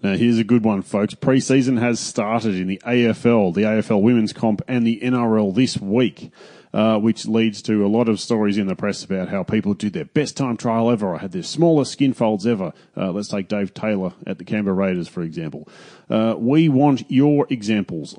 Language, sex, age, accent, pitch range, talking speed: English, male, 30-49, Australian, 105-125 Hz, 210 wpm